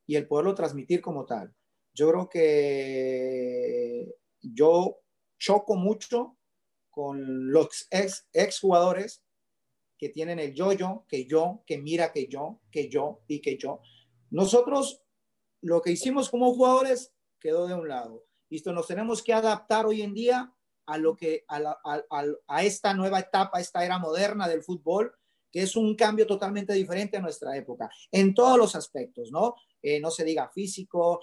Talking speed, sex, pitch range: 165 wpm, male, 160-230 Hz